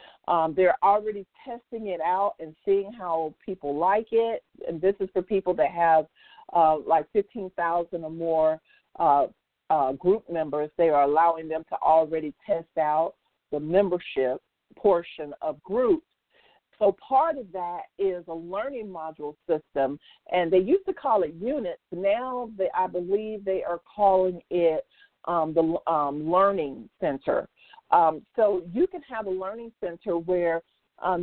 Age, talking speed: 50-69, 150 wpm